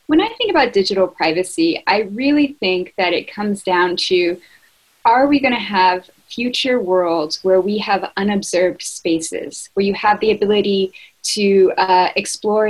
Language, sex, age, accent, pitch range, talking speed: English, female, 10-29, American, 175-215 Hz, 160 wpm